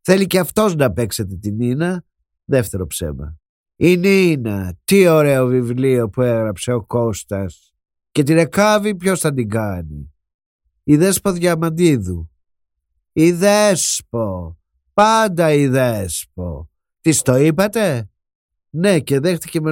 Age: 50-69